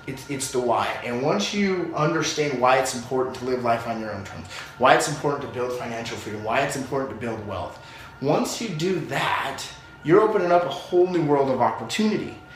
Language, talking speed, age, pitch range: English, 210 wpm, 30-49, 120-155 Hz